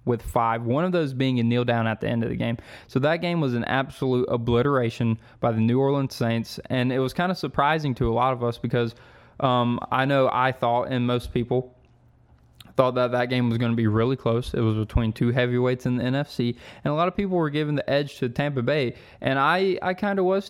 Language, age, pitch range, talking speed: English, 20-39, 115-130 Hz, 245 wpm